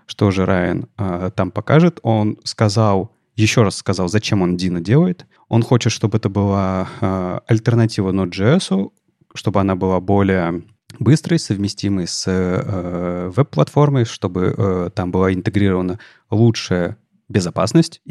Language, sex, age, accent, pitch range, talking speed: Russian, male, 30-49, native, 95-125 Hz, 130 wpm